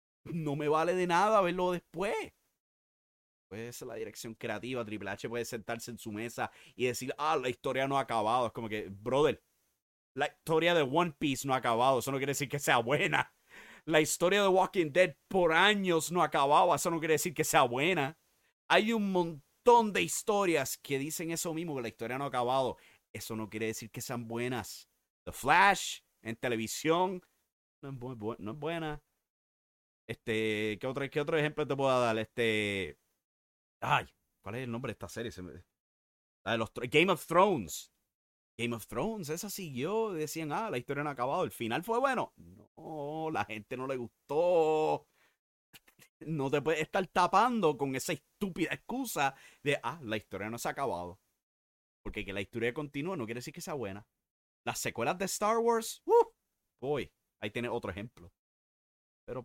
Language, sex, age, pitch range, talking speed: English, male, 30-49, 115-165 Hz, 180 wpm